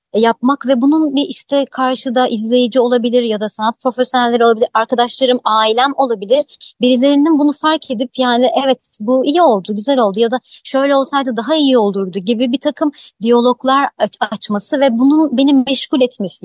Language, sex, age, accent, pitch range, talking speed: Turkish, male, 30-49, native, 210-250 Hz, 160 wpm